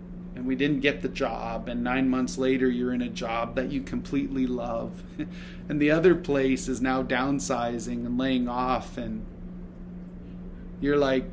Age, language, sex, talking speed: 30-49, English, male, 165 wpm